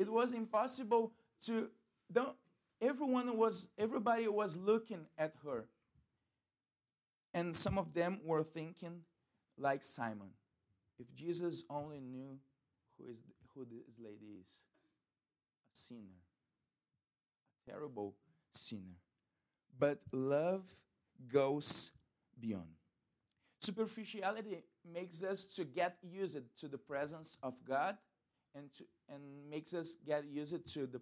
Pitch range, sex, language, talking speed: 120-180 Hz, male, English, 115 wpm